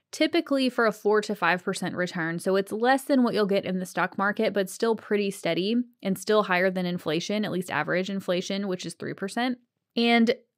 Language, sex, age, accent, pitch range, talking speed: English, female, 20-39, American, 190-245 Hz, 200 wpm